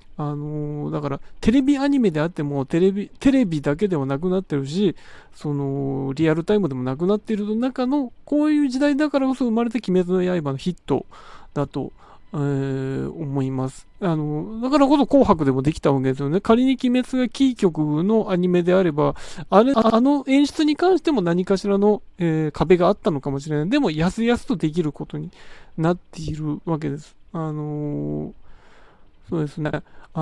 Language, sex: Japanese, male